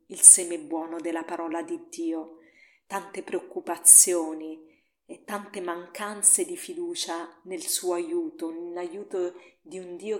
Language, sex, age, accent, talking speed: Italian, female, 40-59, native, 125 wpm